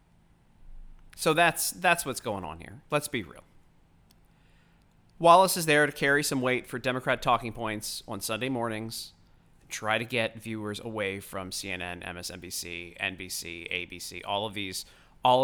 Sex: male